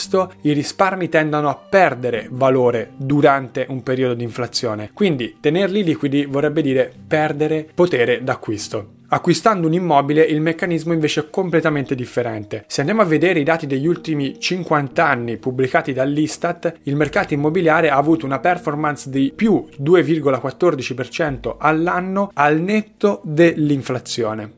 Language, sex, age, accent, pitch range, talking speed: Italian, male, 20-39, native, 130-170 Hz, 130 wpm